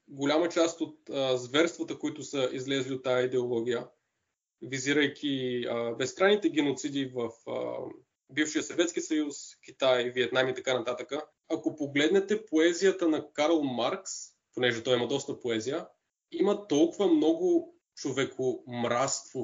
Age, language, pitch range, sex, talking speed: 20-39, Bulgarian, 130-165 Hz, male, 120 wpm